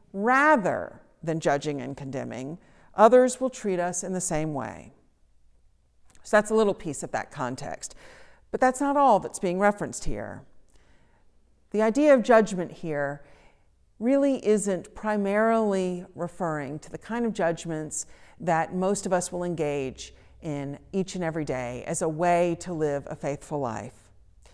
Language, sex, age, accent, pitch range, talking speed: English, female, 50-69, American, 140-200 Hz, 150 wpm